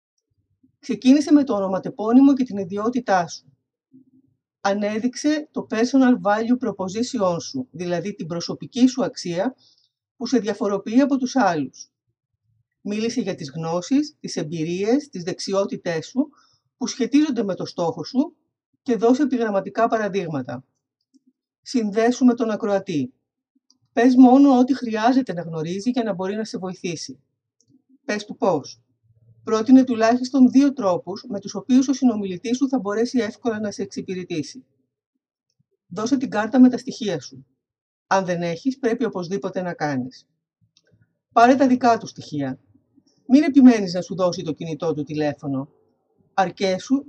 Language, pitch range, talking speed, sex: Greek, 170-245 Hz, 140 wpm, female